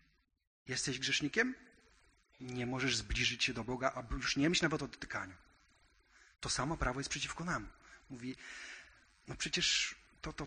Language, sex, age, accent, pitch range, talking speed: Polish, male, 30-49, native, 115-160 Hz, 145 wpm